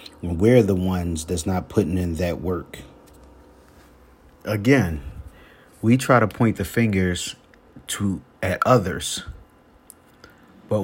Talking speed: 110 wpm